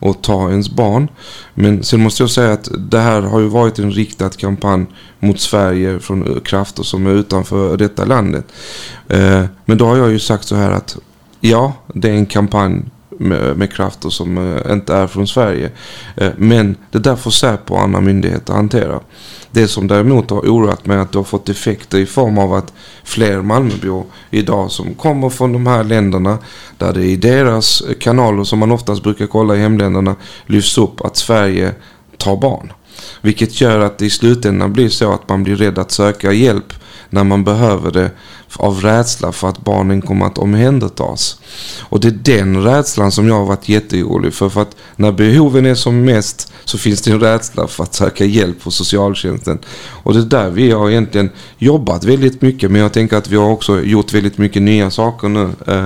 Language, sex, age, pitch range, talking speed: English, male, 30-49, 100-115 Hz, 195 wpm